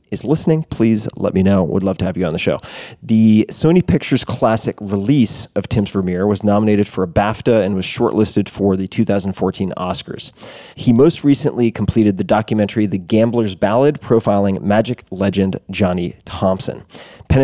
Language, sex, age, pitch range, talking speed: English, male, 30-49, 95-115 Hz, 165 wpm